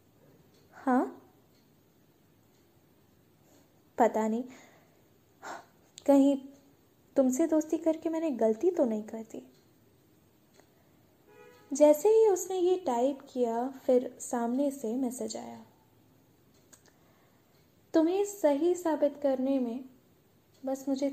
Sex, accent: female, native